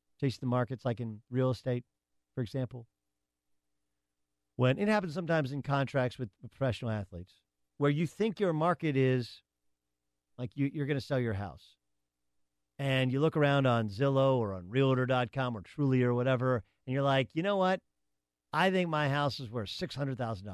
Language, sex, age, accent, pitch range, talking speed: English, male, 50-69, American, 105-165 Hz, 165 wpm